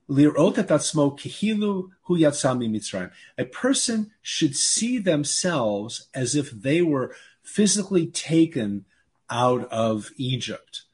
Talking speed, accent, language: 75 wpm, American, English